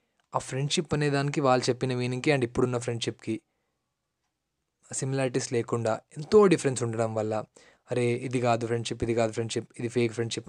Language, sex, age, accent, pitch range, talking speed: Telugu, male, 20-39, native, 120-155 Hz, 145 wpm